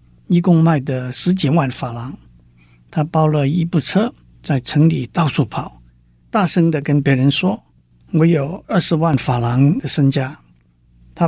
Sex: male